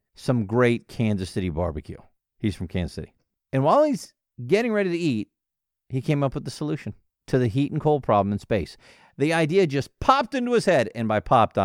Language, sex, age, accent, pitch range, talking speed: English, male, 50-69, American, 105-165 Hz, 205 wpm